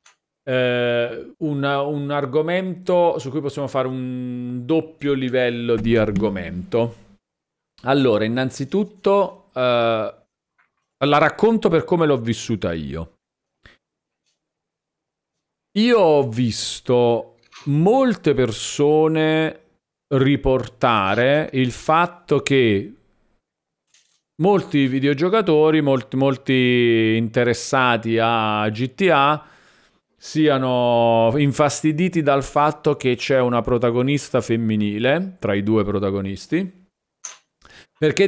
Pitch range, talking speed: 115-150 Hz, 80 wpm